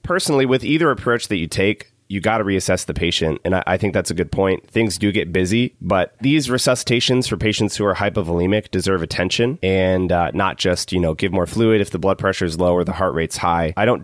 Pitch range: 95-120 Hz